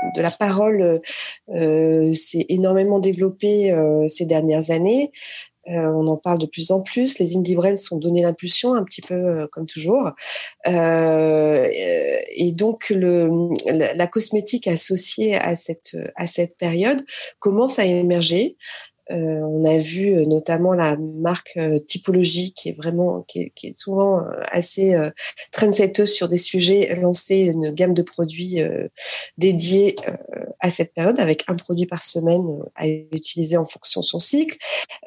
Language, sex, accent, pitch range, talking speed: French, female, French, 170-210 Hz, 165 wpm